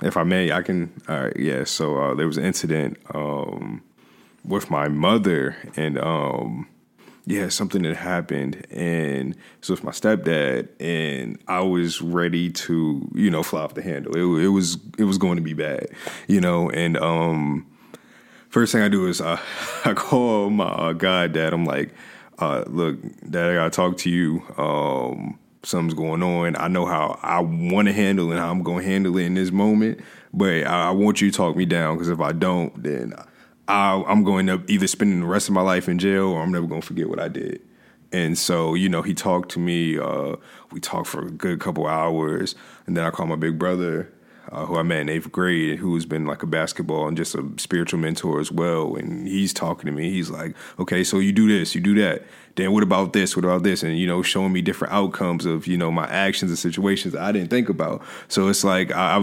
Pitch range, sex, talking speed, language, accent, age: 80-95 Hz, male, 220 wpm, English, American, 20-39